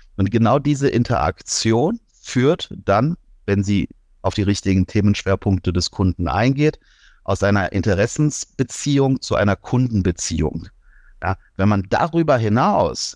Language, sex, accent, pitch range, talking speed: German, male, German, 90-110 Hz, 115 wpm